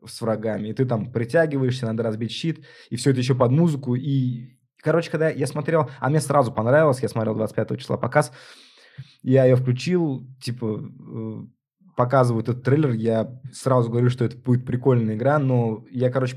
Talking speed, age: 170 wpm, 20-39